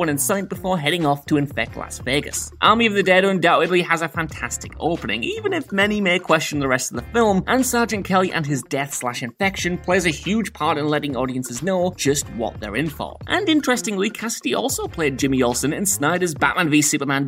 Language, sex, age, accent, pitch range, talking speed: English, male, 20-39, British, 140-200 Hz, 210 wpm